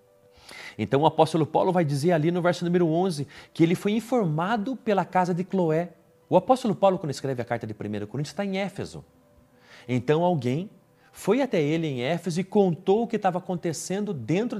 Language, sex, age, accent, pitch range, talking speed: Portuguese, male, 40-59, Brazilian, 125-190 Hz, 190 wpm